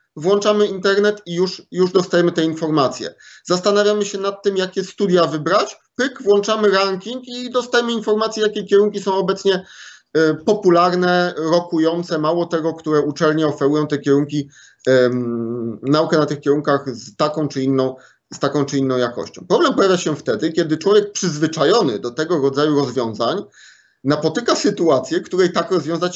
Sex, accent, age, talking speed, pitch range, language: male, native, 30-49, 145 wpm, 150-195 Hz, Polish